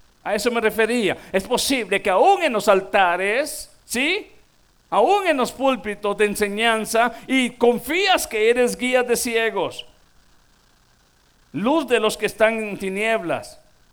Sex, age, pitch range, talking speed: male, 50-69, 205-245 Hz, 140 wpm